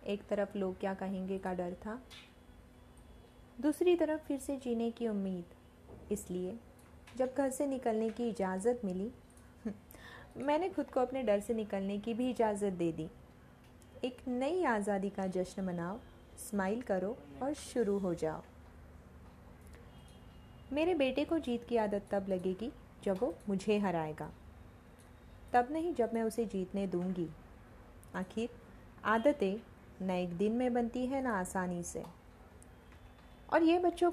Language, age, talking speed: Hindi, 20-39, 140 wpm